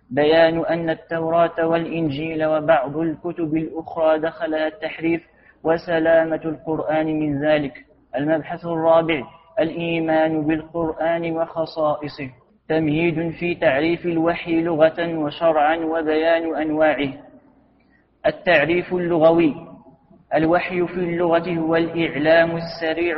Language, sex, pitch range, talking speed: Arabic, male, 160-170 Hz, 90 wpm